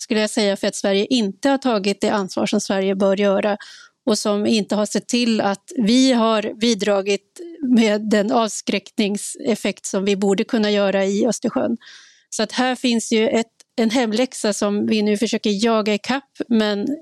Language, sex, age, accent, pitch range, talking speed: Swedish, female, 30-49, native, 210-250 Hz, 175 wpm